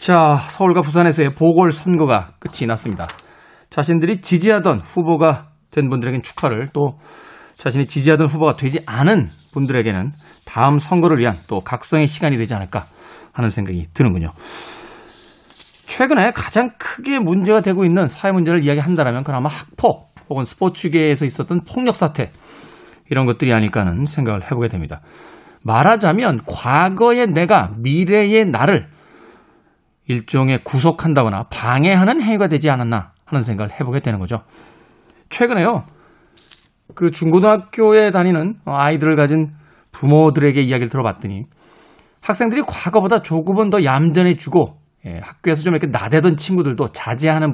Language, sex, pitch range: Korean, male, 125-175 Hz